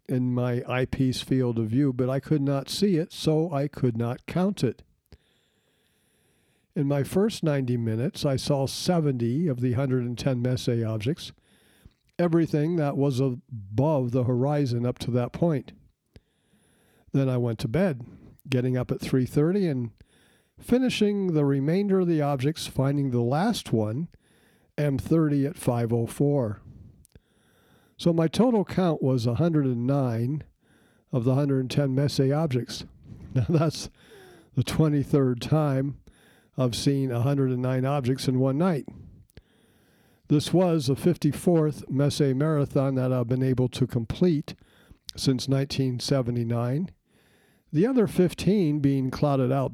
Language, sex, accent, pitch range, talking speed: English, male, American, 125-155 Hz, 130 wpm